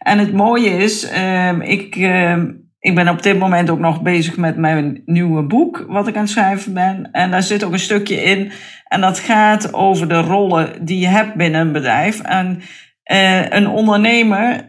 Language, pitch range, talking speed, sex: Dutch, 175-210 Hz, 190 wpm, female